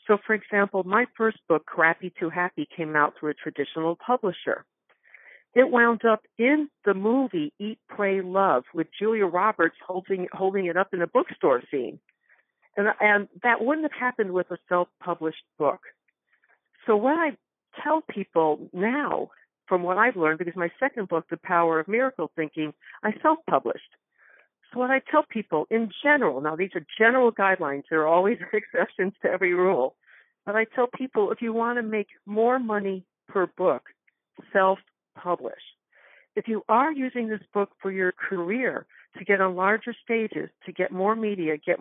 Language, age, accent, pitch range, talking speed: English, 60-79, American, 170-230 Hz, 170 wpm